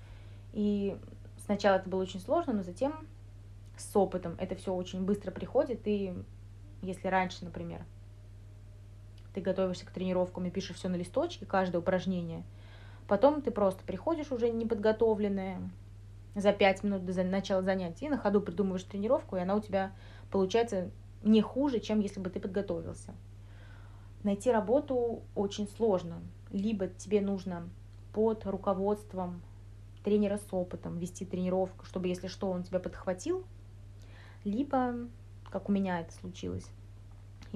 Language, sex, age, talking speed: Russian, female, 20-39, 135 wpm